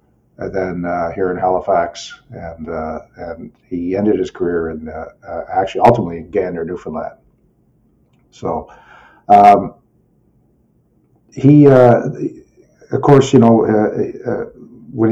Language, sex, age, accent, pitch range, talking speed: English, male, 50-69, American, 95-120 Hz, 125 wpm